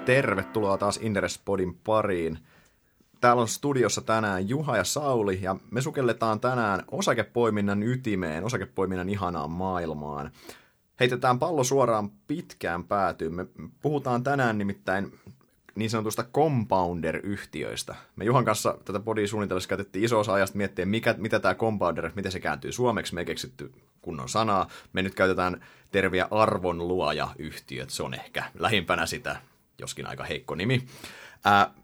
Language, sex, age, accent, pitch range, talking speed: Finnish, male, 30-49, native, 90-115 Hz, 135 wpm